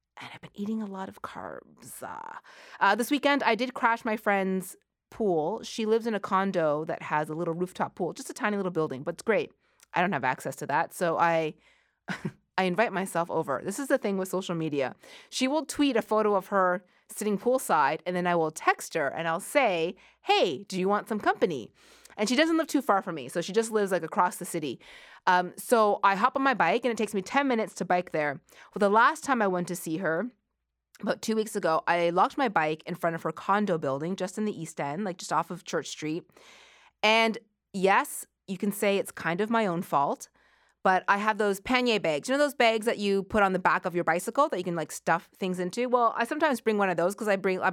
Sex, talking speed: female, 245 wpm